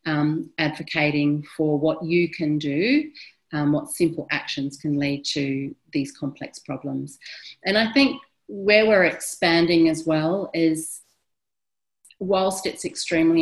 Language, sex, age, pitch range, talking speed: English, female, 40-59, 150-170 Hz, 130 wpm